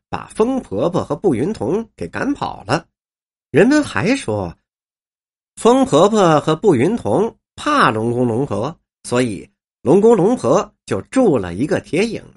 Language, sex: Chinese, male